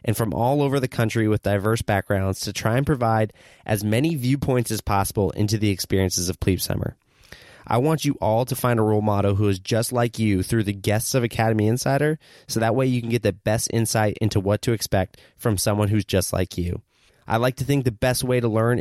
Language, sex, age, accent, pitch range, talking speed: English, male, 20-39, American, 100-125 Hz, 230 wpm